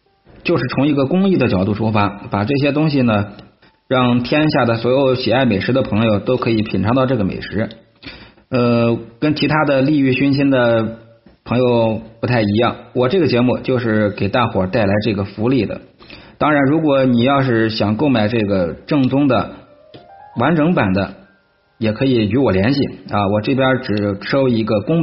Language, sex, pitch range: Chinese, male, 105-140 Hz